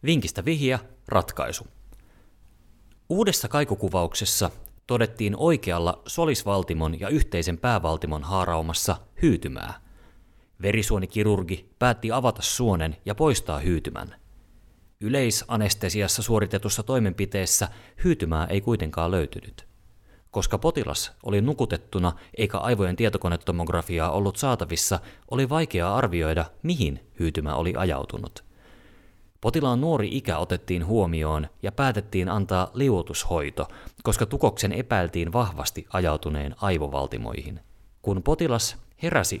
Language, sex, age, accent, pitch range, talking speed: Finnish, male, 30-49, native, 90-115 Hz, 95 wpm